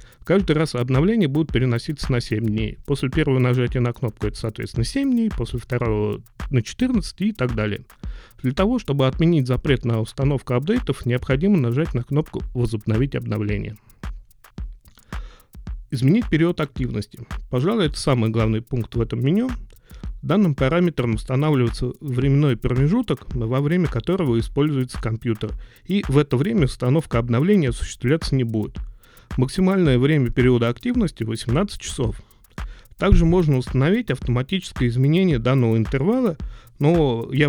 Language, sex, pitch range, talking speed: Russian, male, 115-145 Hz, 135 wpm